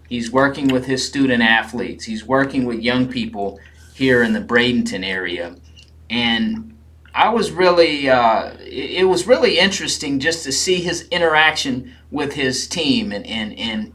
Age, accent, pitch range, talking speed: 30-49, American, 110-150 Hz, 150 wpm